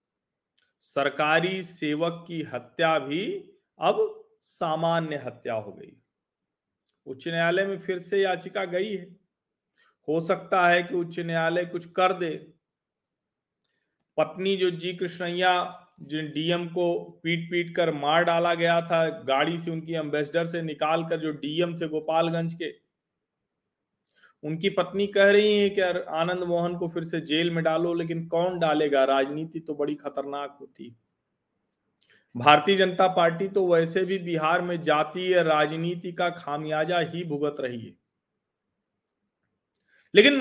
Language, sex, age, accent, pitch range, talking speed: Hindi, male, 40-59, native, 155-185 Hz, 135 wpm